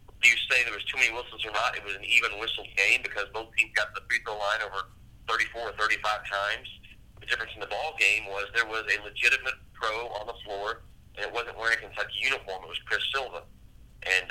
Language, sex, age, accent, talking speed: English, male, 40-59, American, 235 wpm